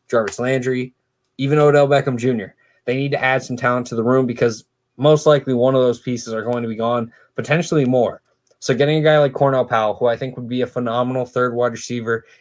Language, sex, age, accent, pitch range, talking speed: English, male, 20-39, American, 115-135 Hz, 220 wpm